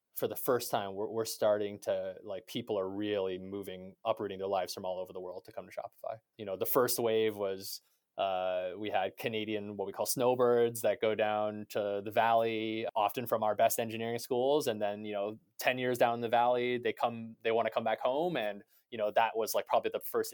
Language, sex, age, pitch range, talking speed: English, male, 20-39, 105-120 Hz, 230 wpm